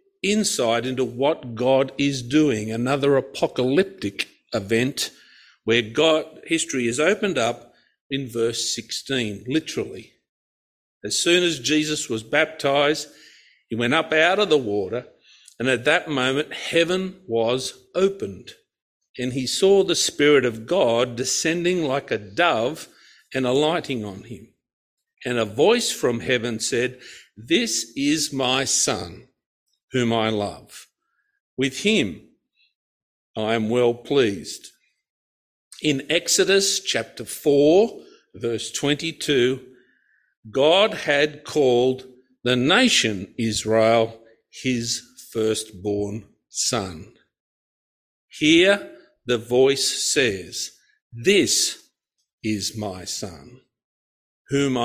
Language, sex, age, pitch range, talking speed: English, male, 50-69, 115-155 Hz, 105 wpm